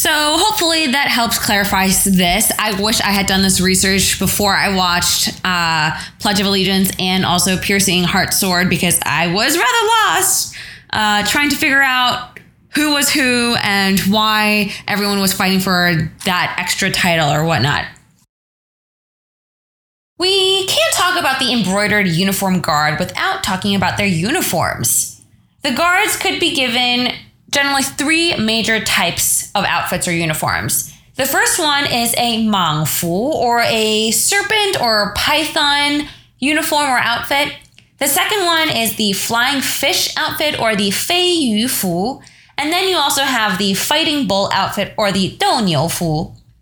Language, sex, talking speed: English, female, 150 wpm